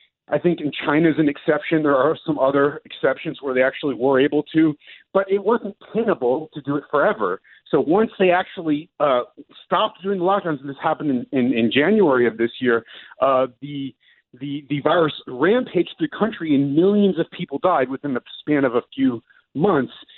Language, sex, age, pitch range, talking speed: English, male, 40-59, 140-195 Hz, 195 wpm